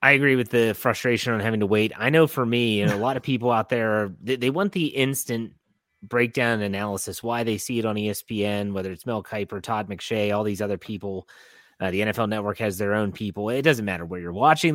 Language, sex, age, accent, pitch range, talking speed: English, male, 30-49, American, 105-135 Hz, 240 wpm